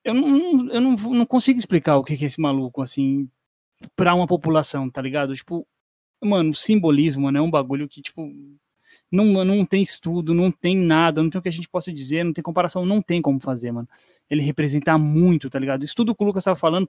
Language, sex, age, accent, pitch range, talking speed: Portuguese, male, 20-39, Brazilian, 155-195 Hz, 220 wpm